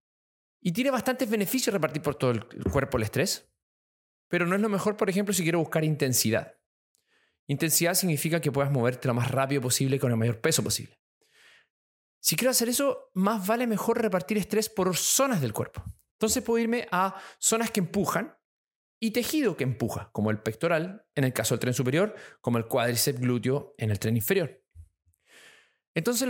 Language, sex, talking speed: Spanish, male, 180 wpm